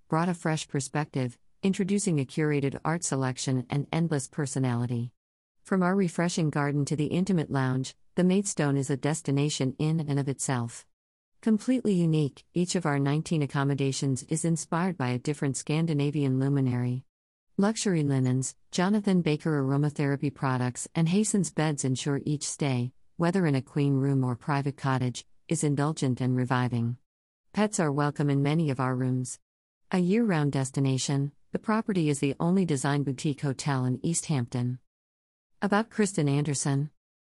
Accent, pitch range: American, 135-165 Hz